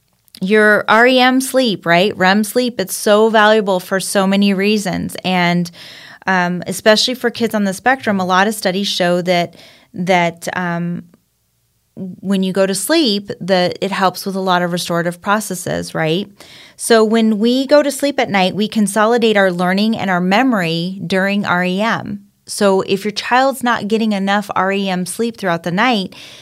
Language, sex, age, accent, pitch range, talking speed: English, female, 30-49, American, 180-215 Hz, 165 wpm